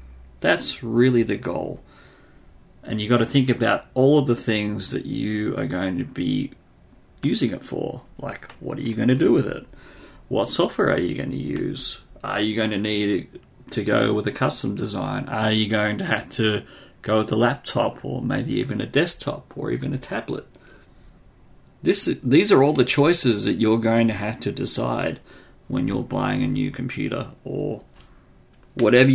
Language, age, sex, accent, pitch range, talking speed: English, 40-59, male, Australian, 100-130 Hz, 185 wpm